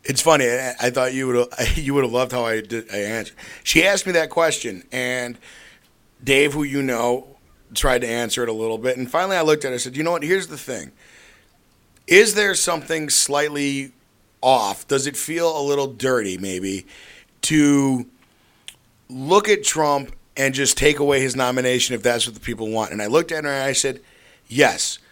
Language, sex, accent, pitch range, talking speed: English, male, American, 120-145 Hz, 195 wpm